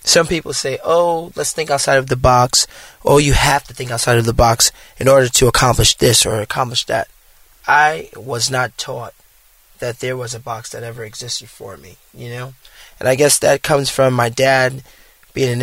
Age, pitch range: 20-39, 115-135 Hz